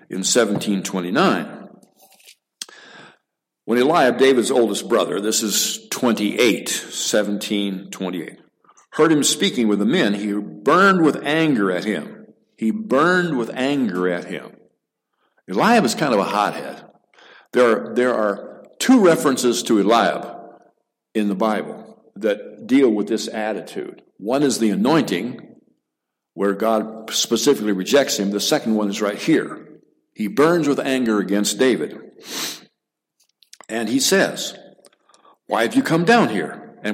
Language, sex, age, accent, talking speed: English, male, 60-79, American, 130 wpm